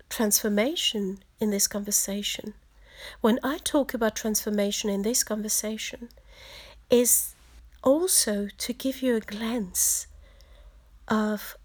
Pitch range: 200-250 Hz